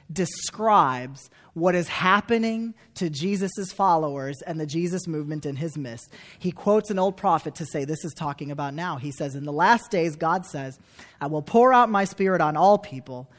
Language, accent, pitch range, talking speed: English, American, 140-185 Hz, 195 wpm